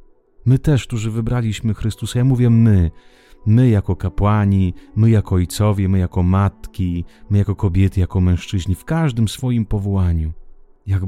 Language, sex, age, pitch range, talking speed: Italian, male, 30-49, 85-100 Hz, 145 wpm